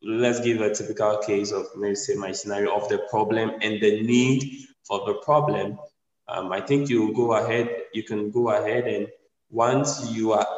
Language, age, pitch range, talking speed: English, 10-29, 105-130 Hz, 185 wpm